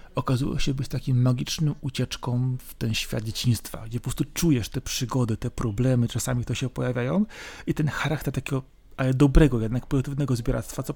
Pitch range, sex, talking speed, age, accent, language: 125-155 Hz, male, 170 wpm, 30-49, native, Polish